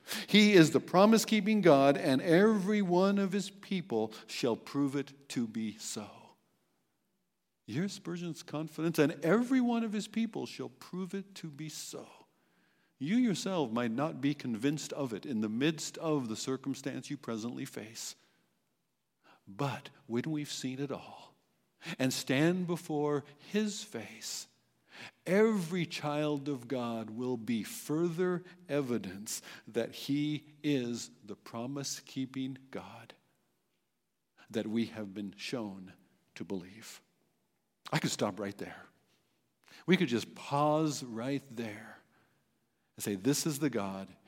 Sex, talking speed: male, 135 wpm